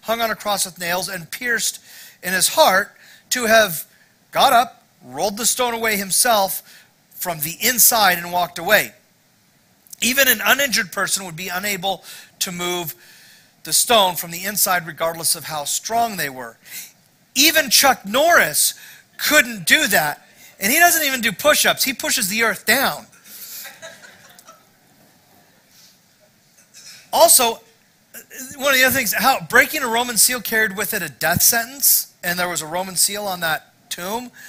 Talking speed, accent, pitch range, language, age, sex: 155 wpm, American, 180-235 Hz, English, 40-59, male